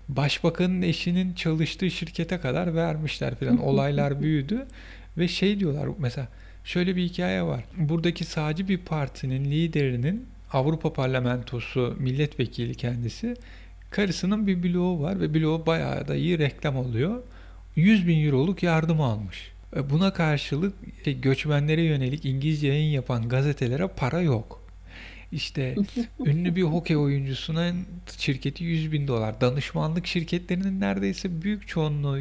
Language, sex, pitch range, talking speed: Turkish, male, 130-175 Hz, 125 wpm